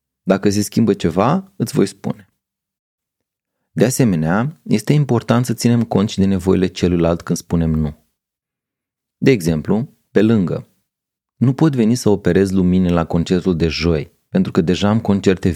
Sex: male